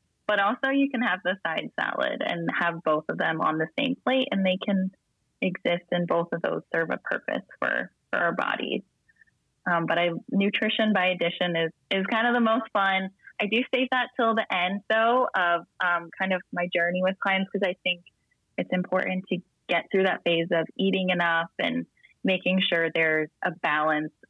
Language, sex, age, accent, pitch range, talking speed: English, female, 20-39, American, 165-200 Hz, 200 wpm